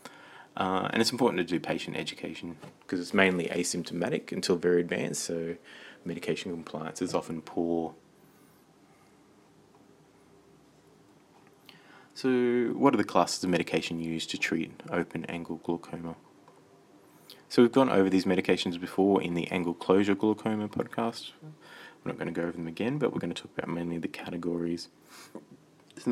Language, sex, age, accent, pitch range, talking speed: English, male, 20-39, Australian, 85-95 Hz, 145 wpm